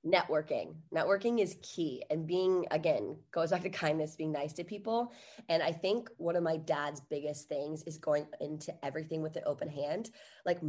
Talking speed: 185 wpm